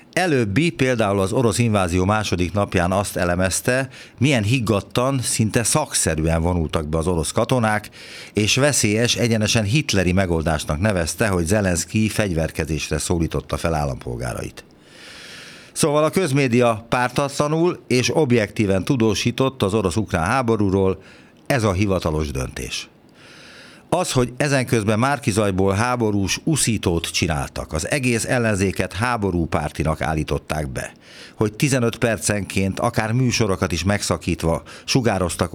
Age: 60-79